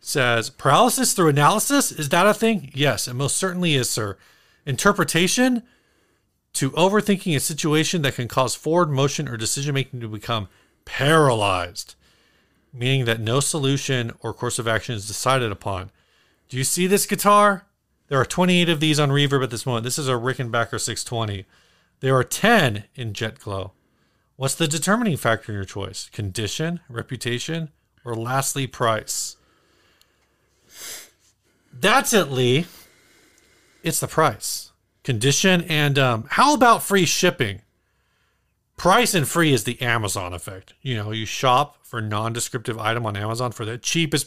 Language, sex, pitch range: English, male, 115-165 Hz